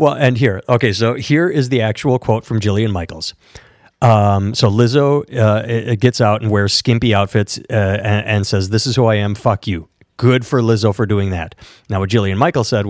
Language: English